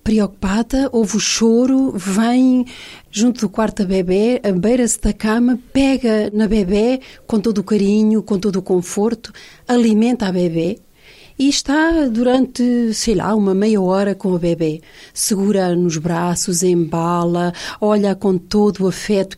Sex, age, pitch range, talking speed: female, 40-59, 185-230 Hz, 150 wpm